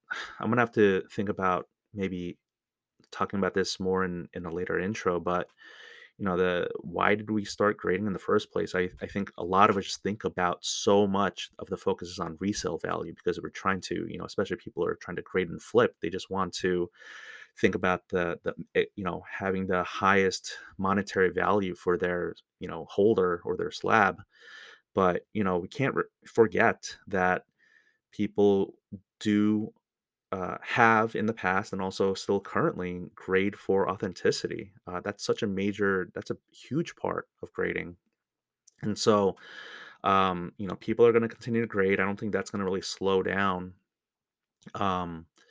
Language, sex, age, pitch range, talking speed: English, male, 30-49, 90-105 Hz, 185 wpm